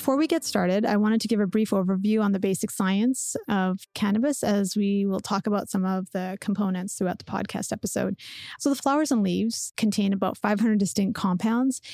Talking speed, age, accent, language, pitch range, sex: 200 wpm, 30-49, American, English, 195-225 Hz, female